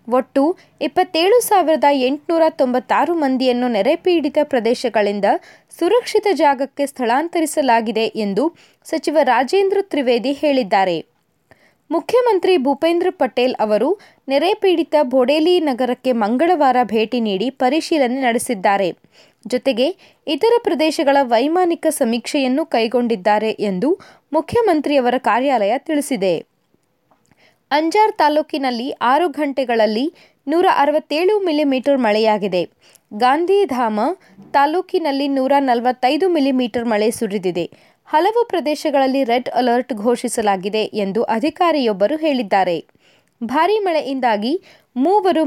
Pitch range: 240-325 Hz